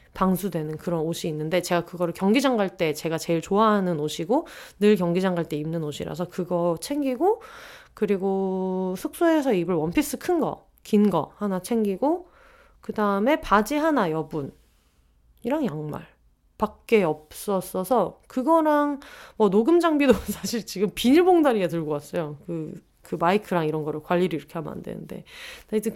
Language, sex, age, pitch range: Korean, female, 30-49, 175-260 Hz